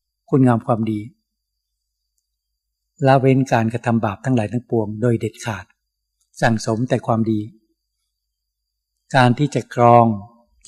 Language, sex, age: Thai, male, 60-79